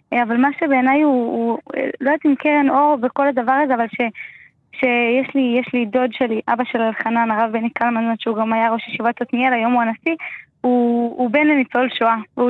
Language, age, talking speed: Hebrew, 20-39, 200 wpm